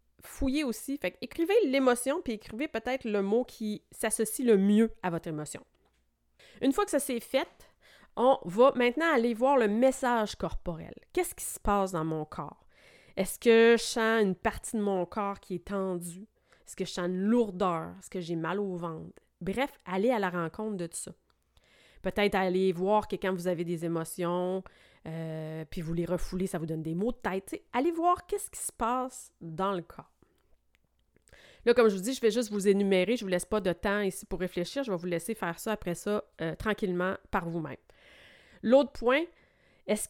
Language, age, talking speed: French, 30-49, 205 wpm